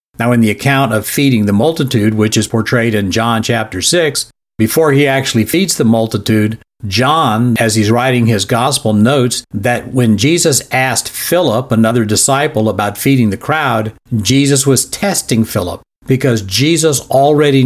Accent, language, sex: American, English, male